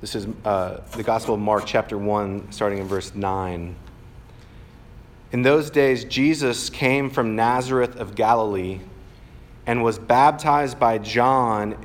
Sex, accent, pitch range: male, American, 110-135 Hz